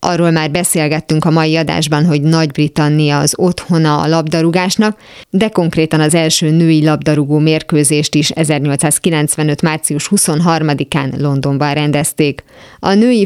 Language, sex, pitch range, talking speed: Hungarian, female, 150-170 Hz, 120 wpm